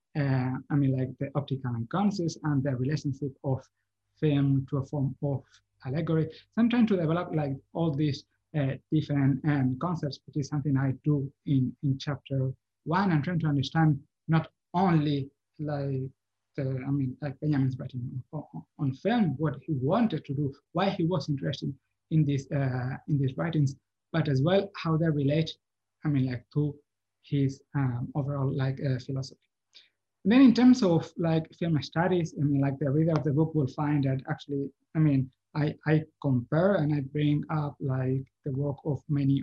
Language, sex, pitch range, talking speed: English, male, 135-155 Hz, 180 wpm